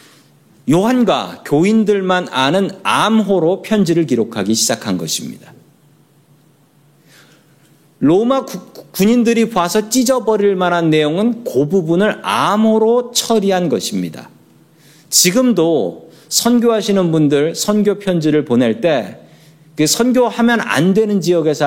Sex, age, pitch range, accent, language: male, 40-59, 145-210 Hz, native, Korean